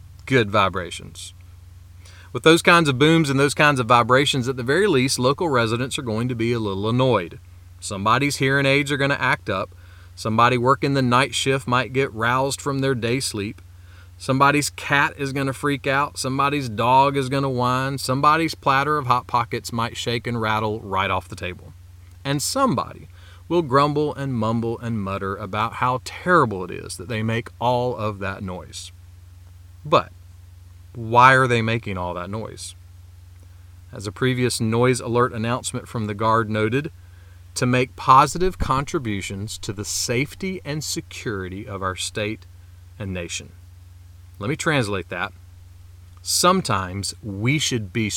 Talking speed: 160 wpm